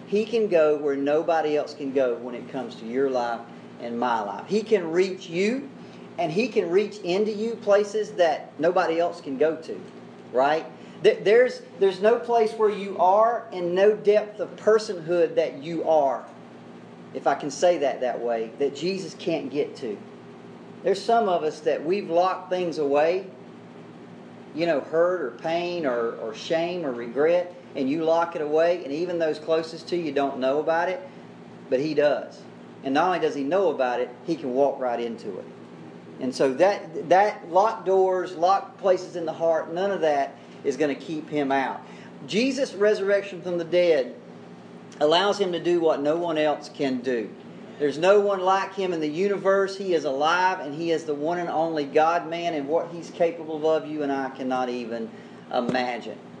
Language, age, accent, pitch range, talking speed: English, 40-59, American, 140-190 Hz, 190 wpm